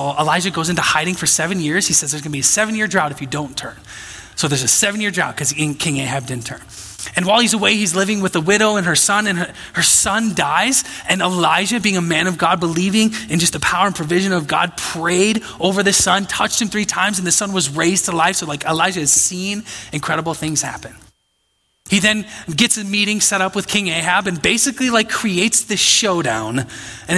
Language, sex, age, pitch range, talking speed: English, male, 20-39, 165-215 Hz, 230 wpm